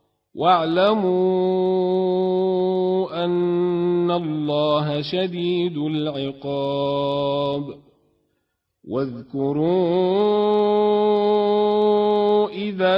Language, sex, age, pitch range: Arabic, male, 40-59, 185-210 Hz